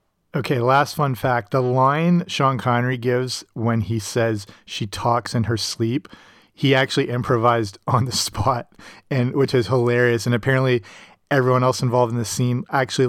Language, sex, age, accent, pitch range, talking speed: English, male, 30-49, American, 115-135 Hz, 165 wpm